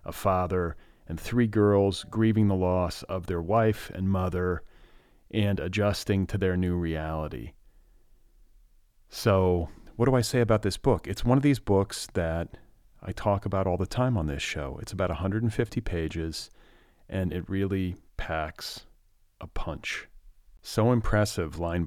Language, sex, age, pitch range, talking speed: English, male, 40-59, 90-110 Hz, 150 wpm